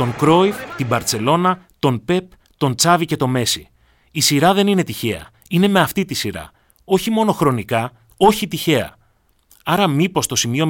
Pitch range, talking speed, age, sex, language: 115-165 Hz, 170 wpm, 30-49, male, Greek